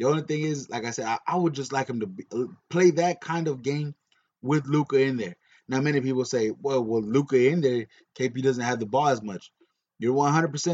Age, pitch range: 20-39, 130-170 Hz